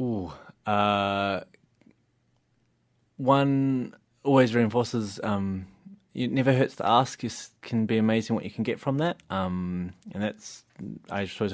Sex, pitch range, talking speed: male, 90-115 Hz, 135 wpm